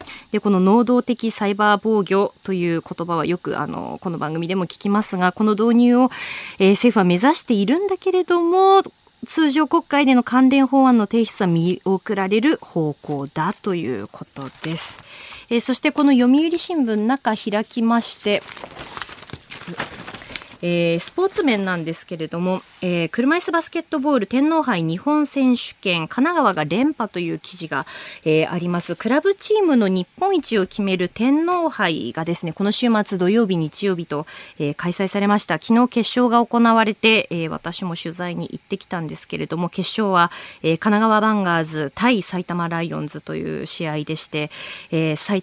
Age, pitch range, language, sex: 20-39, 175-250 Hz, Japanese, female